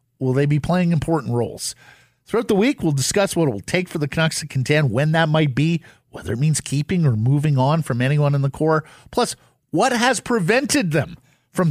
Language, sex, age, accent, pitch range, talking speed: English, male, 50-69, American, 130-175 Hz, 215 wpm